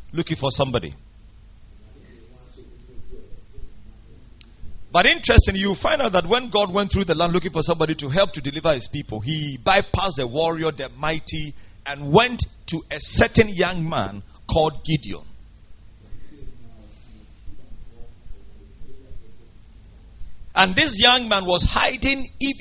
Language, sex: English, male